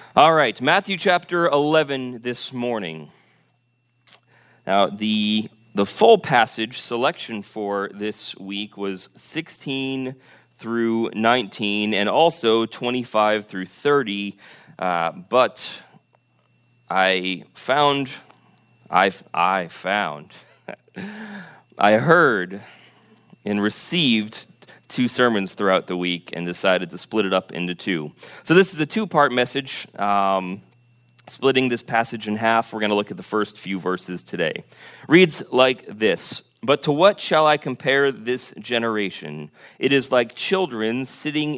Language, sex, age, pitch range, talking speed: English, male, 30-49, 105-140 Hz, 125 wpm